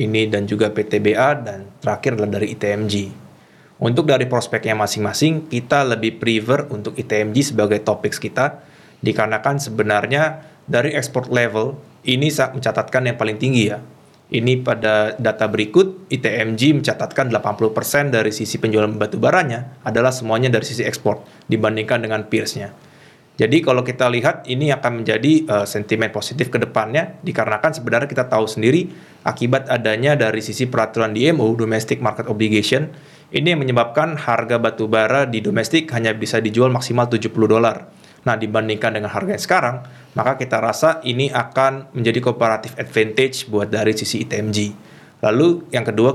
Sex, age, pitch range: male, 20-39, 110-135 Hz